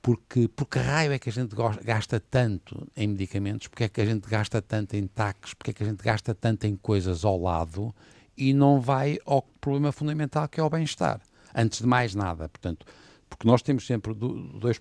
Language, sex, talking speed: Portuguese, male, 205 wpm